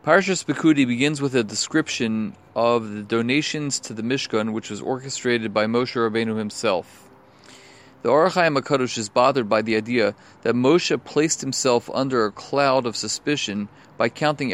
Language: English